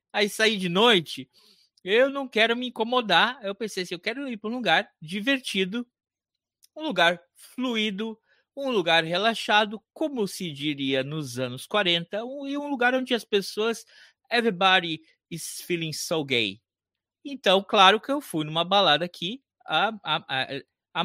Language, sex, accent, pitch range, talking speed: Portuguese, male, Brazilian, 135-205 Hz, 160 wpm